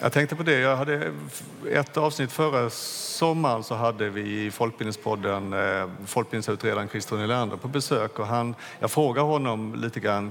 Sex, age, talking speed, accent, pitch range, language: male, 50-69, 155 wpm, Norwegian, 100-115 Hz, Swedish